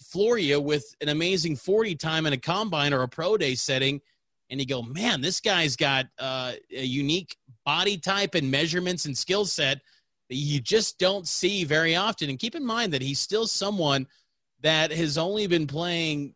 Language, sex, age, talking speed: English, male, 30-49, 185 wpm